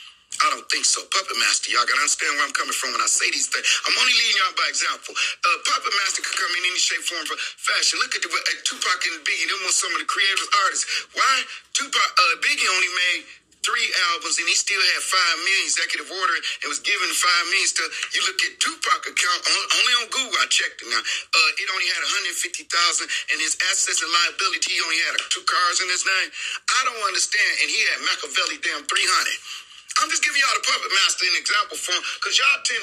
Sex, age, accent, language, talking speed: male, 40-59, American, English, 230 wpm